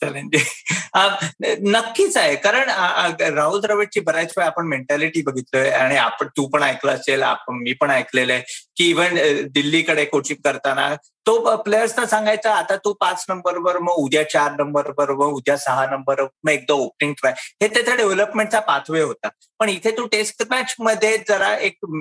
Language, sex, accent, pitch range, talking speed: Marathi, male, native, 145-210 Hz, 160 wpm